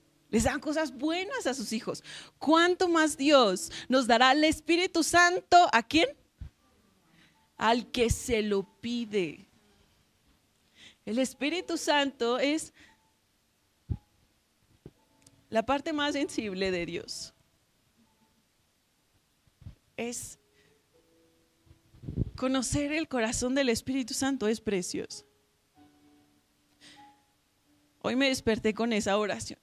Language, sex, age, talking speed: Spanish, female, 30-49, 95 wpm